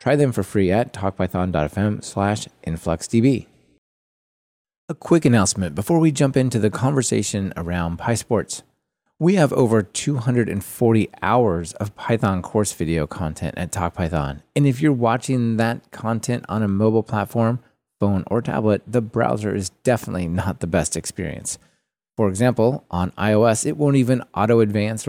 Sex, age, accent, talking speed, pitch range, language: male, 30-49, American, 145 wpm, 95-125 Hz, English